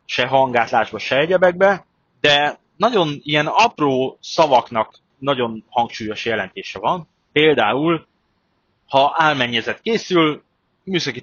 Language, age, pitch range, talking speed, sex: Hungarian, 30-49, 115-155 Hz, 95 wpm, male